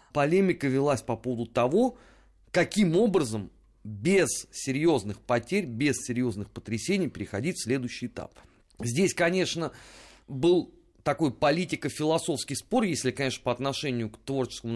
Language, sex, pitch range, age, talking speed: Russian, male, 115-165 Hz, 30-49, 120 wpm